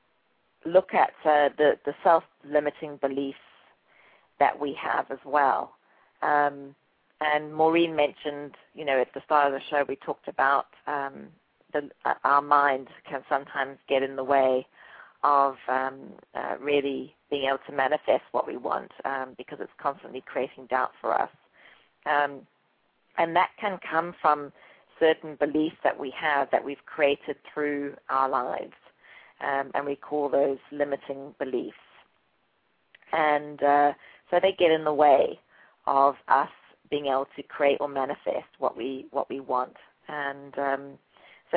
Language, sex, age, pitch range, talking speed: English, female, 40-59, 140-155 Hz, 150 wpm